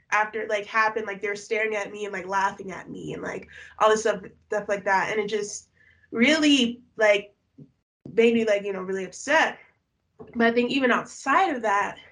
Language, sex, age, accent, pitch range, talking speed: English, female, 20-39, American, 190-225 Hz, 205 wpm